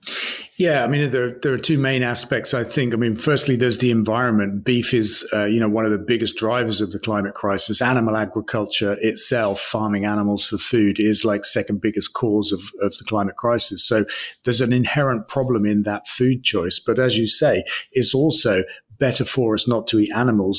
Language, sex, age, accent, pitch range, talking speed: English, male, 40-59, British, 105-125 Hz, 205 wpm